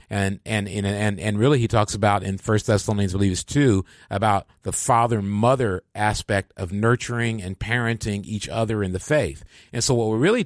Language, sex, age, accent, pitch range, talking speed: English, male, 40-59, American, 95-120 Hz, 195 wpm